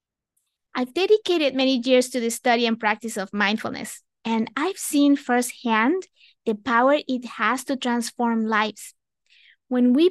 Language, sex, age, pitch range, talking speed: English, female, 20-39, 230-315 Hz, 140 wpm